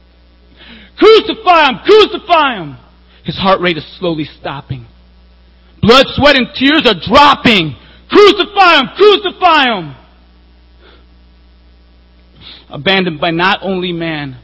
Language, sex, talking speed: English, male, 105 wpm